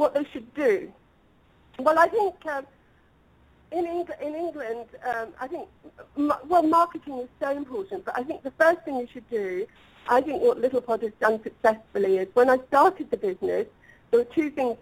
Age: 50-69